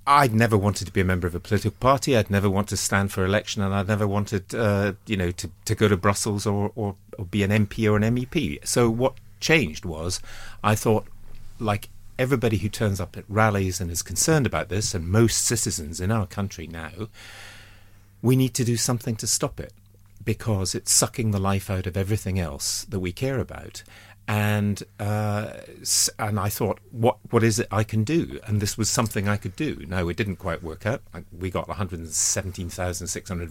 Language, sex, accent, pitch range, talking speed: English, male, British, 95-115 Hz, 200 wpm